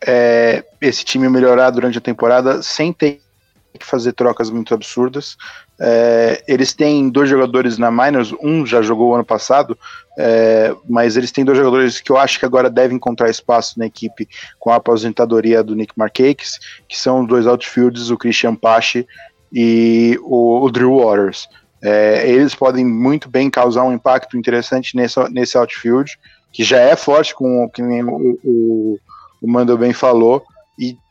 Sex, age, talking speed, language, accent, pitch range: male, 20-39, 165 wpm, English, Brazilian, 120-140 Hz